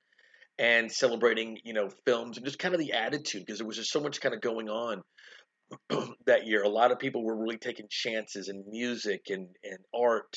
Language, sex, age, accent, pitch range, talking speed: English, male, 40-59, American, 100-125 Hz, 210 wpm